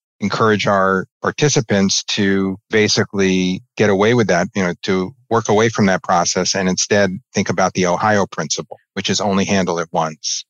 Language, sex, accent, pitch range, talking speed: English, male, American, 95-115 Hz, 170 wpm